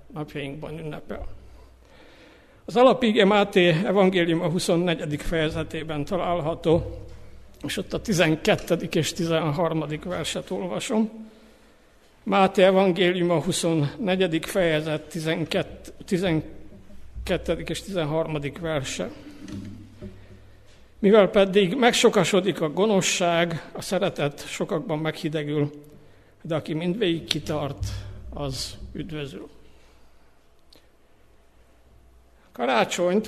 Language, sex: Hungarian, male